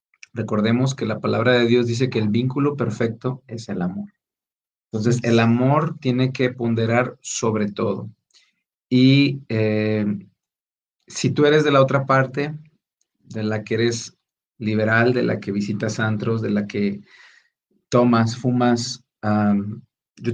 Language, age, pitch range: Spanish, 40-59, 115-135 Hz